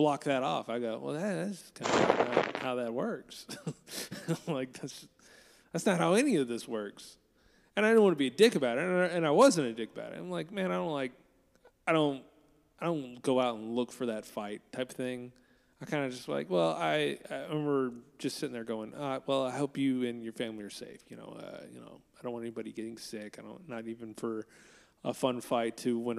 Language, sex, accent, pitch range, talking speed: English, male, American, 120-180 Hz, 235 wpm